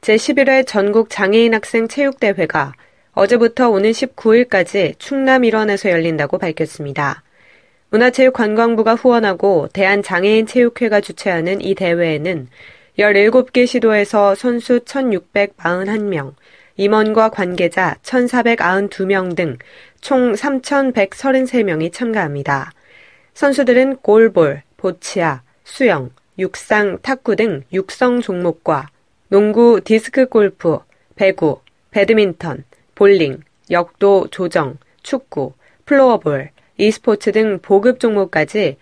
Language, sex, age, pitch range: Korean, female, 20-39, 180-245 Hz